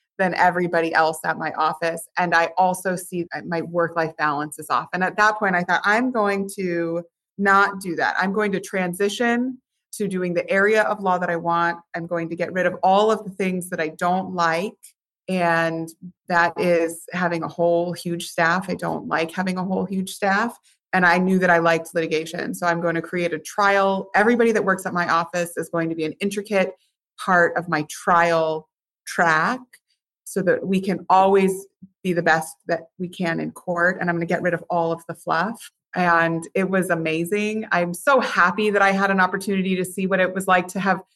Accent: American